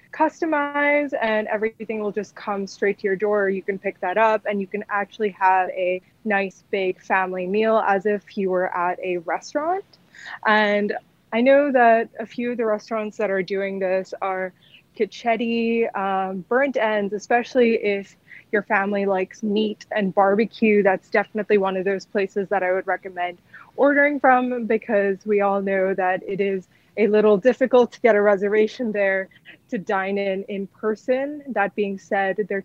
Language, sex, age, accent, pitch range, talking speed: English, female, 20-39, American, 190-225 Hz, 170 wpm